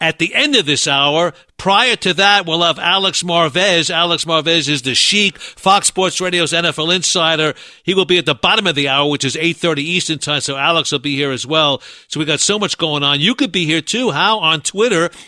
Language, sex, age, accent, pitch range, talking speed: English, male, 50-69, American, 160-210 Hz, 235 wpm